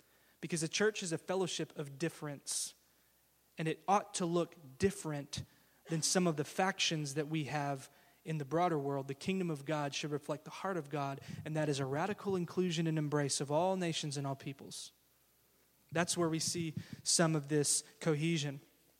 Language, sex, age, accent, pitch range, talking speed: English, male, 20-39, American, 150-195 Hz, 185 wpm